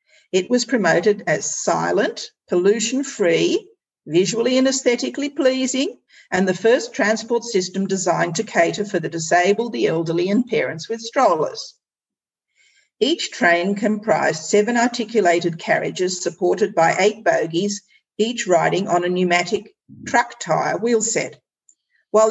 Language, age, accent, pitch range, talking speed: English, 50-69, Australian, 180-255 Hz, 130 wpm